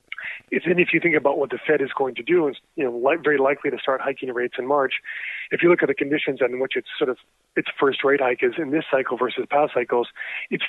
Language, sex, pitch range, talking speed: English, male, 125-150 Hz, 235 wpm